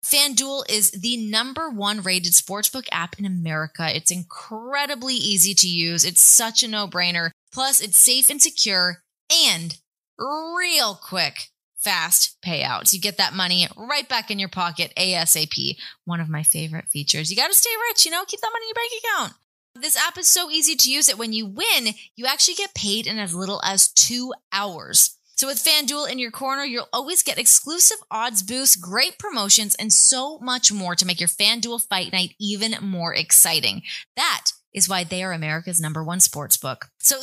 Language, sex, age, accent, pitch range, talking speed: English, female, 20-39, American, 180-270 Hz, 190 wpm